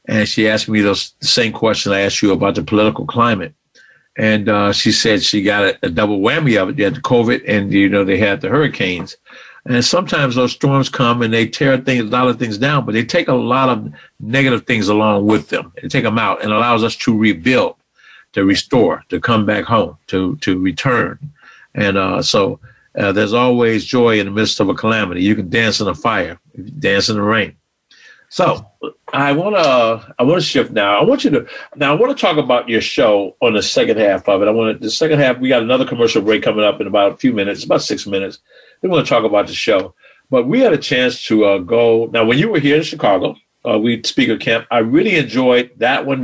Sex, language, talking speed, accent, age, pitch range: male, English, 235 wpm, American, 50-69, 105-125 Hz